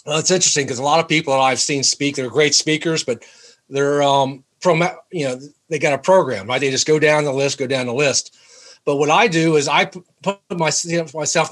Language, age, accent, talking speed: English, 40-59, American, 230 wpm